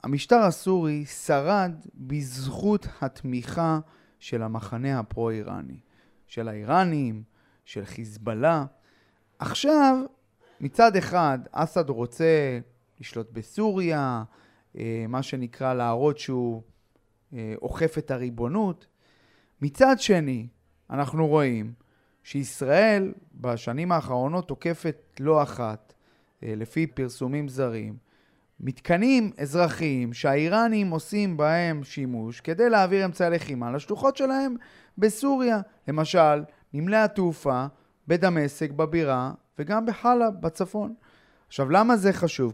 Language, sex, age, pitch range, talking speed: Hebrew, male, 30-49, 130-195 Hz, 90 wpm